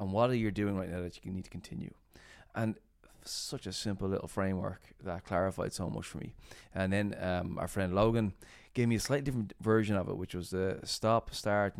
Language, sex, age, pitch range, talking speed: English, male, 20-39, 95-110 Hz, 225 wpm